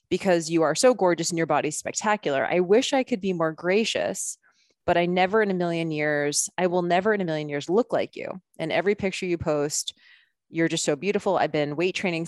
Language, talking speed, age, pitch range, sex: English, 225 wpm, 20-39, 155-200 Hz, female